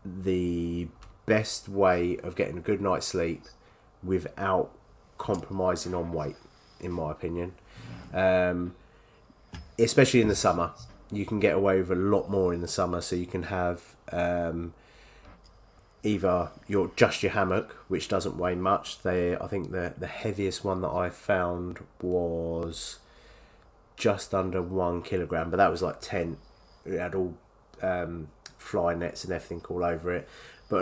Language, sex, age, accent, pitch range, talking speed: English, male, 30-49, British, 90-100 Hz, 150 wpm